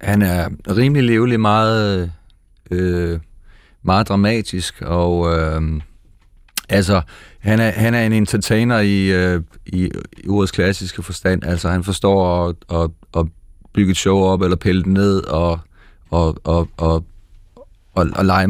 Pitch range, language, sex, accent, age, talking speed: 85-100 Hz, Danish, male, native, 30-49, 145 wpm